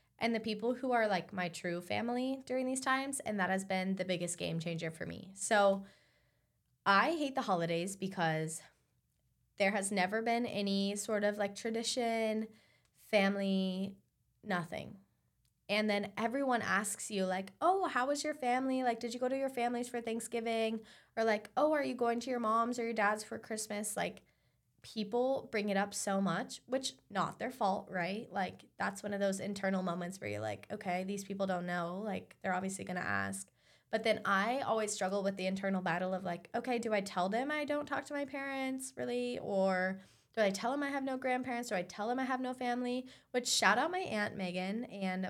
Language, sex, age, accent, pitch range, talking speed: English, female, 20-39, American, 185-240 Hz, 200 wpm